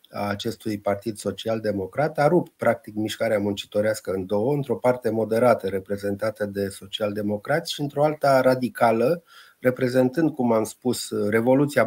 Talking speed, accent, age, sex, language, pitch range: 130 wpm, native, 30-49, male, Romanian, 105-130 Hz